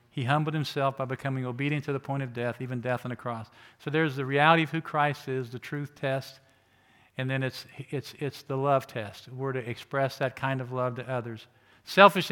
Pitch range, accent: 130-160 Hz, American